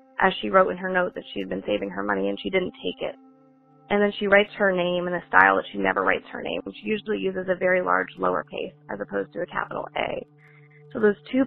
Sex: female